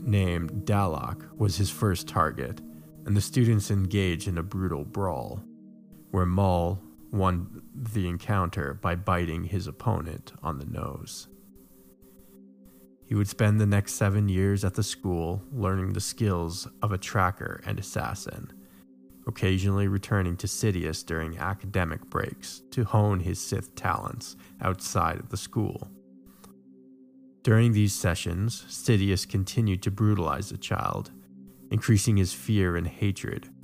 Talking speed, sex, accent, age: 130 wpm, male, American, 20-39